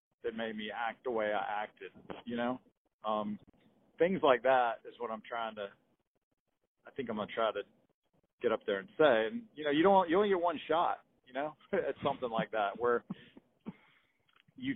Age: 40-59